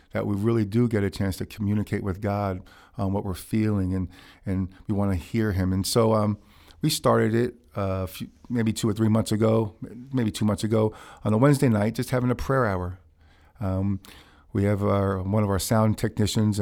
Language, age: English, 50-69